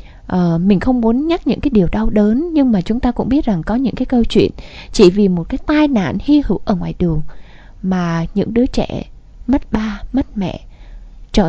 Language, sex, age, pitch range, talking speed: Vietnamese, female, 20-39, 185-255 Hz, 220 wpm